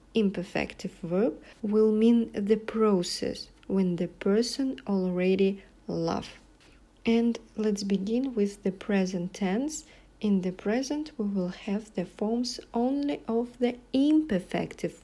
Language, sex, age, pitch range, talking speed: English, female, 40-59, 190-240 Hz, 120 wpm